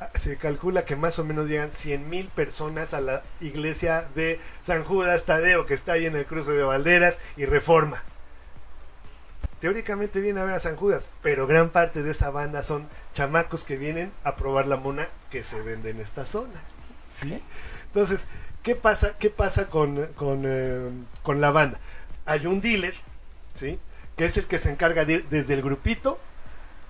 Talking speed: 180 wpm